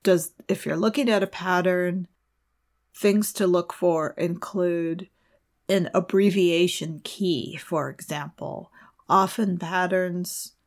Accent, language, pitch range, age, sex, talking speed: American, English, 165-185 Hz, 40-59, female, 105 wpm